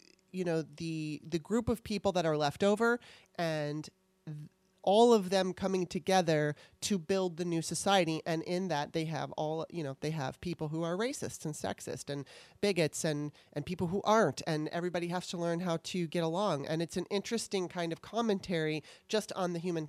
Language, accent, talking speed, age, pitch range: English, American, 195 wpm, 30-49, 155-195 Hz